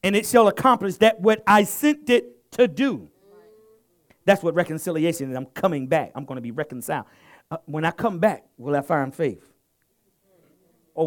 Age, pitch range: 50-69, 120-195 Hz